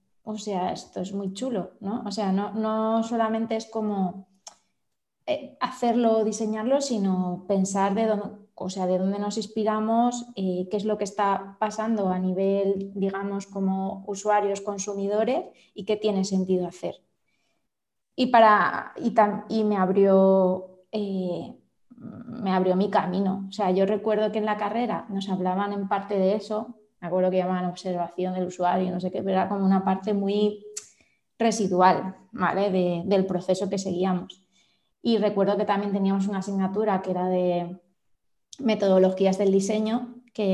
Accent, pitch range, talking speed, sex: Spanish, 185-215 Hz, 150 wpm, female